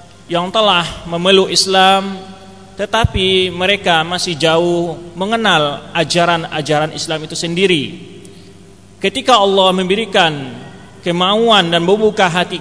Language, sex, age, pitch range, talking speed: Malay, male, 30-49, 165-190 Hz, 95 wpm